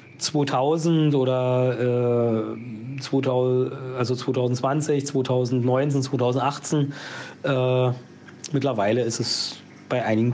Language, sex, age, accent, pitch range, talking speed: German, male, 40-59, German, 125-145 Hz, 80 wpm